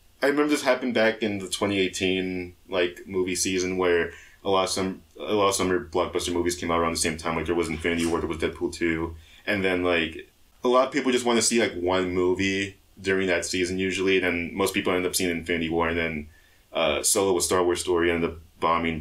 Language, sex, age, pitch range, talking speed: English, male, 20-39, 85-100 Hz, 235 wpm